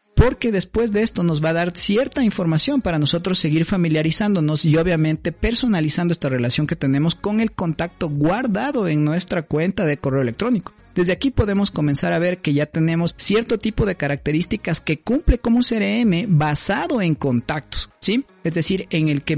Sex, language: male, Spanish